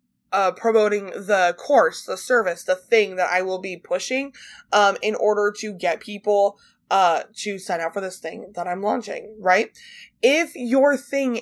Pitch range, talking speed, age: 190-235 Hz, 175 wpm, 20-39